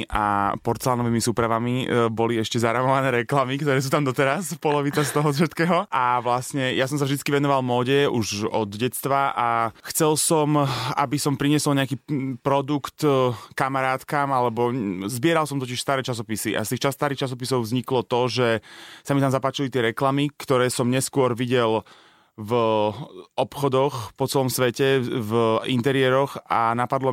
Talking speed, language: 155 wpm, Slovak